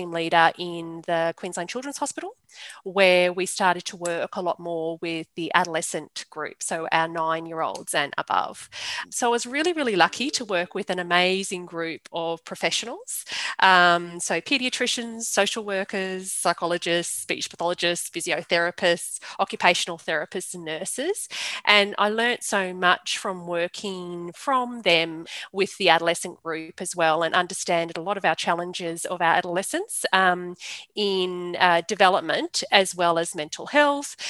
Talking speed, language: 145 wpm, English